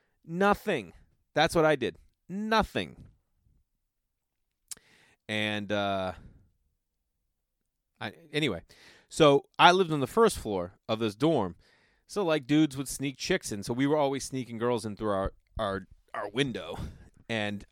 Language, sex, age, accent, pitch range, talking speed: English, male, 30-49, American, 95-125 Hz, 135 wpm